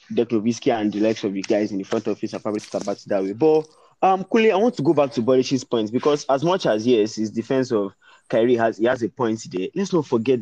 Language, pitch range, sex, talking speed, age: English, 110-145 Hz, male, 275 wpm, 20-39